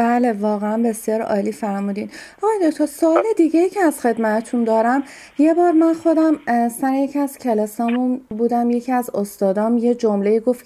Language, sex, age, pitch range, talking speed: Persian, female, 30-49, 205-255 Hz, 160 wpm